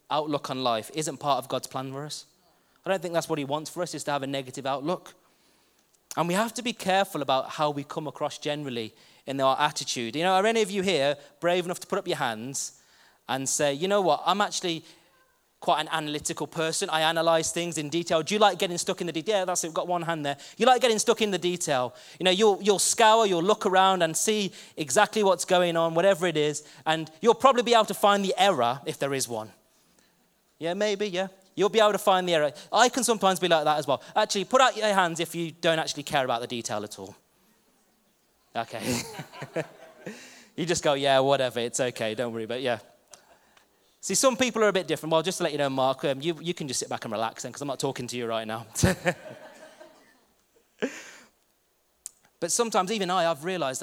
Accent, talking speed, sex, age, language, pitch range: British, 230 wpm, male, 20-39, English, 140-190 Hz